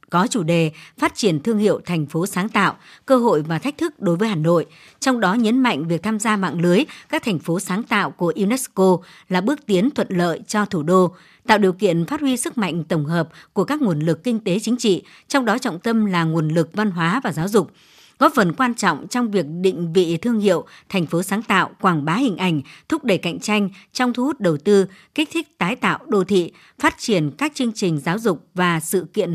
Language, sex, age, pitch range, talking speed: Vietnamese, male, 60-79, 175-230 Hz, 235 wpm